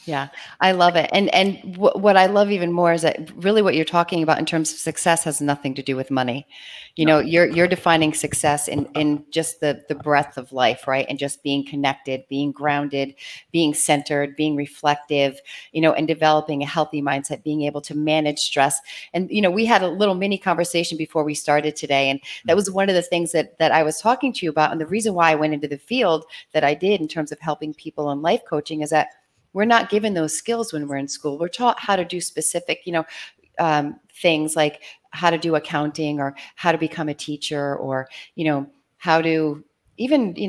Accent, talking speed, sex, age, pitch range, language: American, 225 wpm, female, 40-59, 145-175 Hz, English